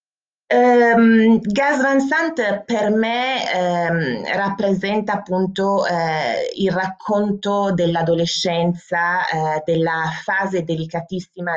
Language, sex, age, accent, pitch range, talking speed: Italian, female, 30-49, native, 155-195 Hz, 90 wpm